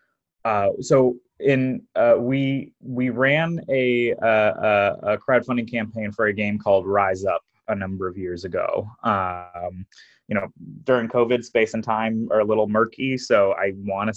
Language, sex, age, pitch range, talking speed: English, male, 20-39, 100-125 Hz, 165 wpm